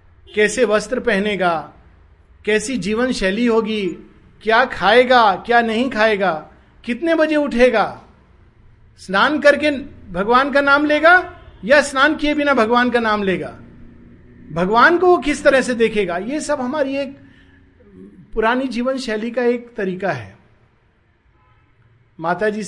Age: 50-69